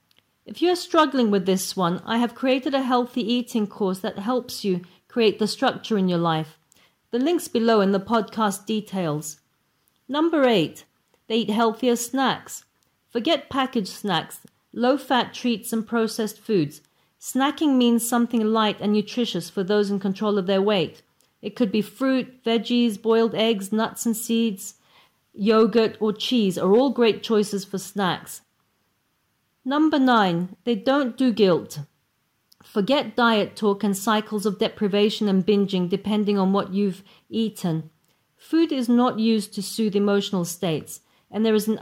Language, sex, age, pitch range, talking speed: English, female, 40-59, 200-235 Hz, 155 wpm